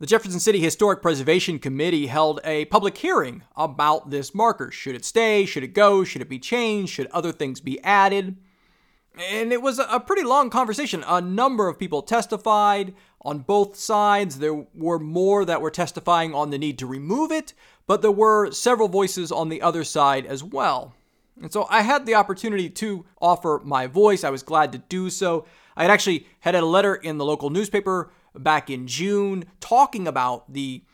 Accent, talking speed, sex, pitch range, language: American, 190 wpm, male, 155-210 Hz, English